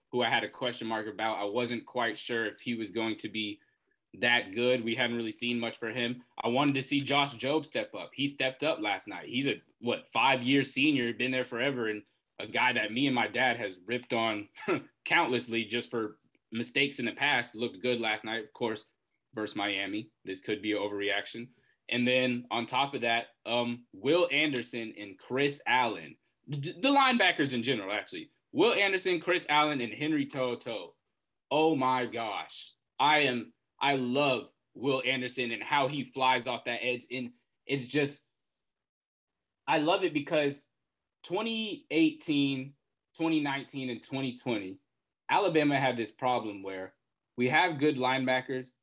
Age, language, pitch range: 20-39, English, 115-145 Hz